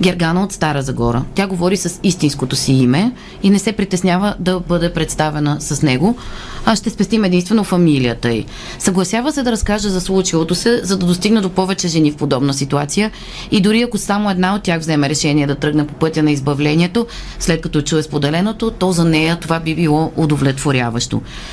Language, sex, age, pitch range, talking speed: Bulgarian, female, 30-49, 150-190 Hz, 185 wpm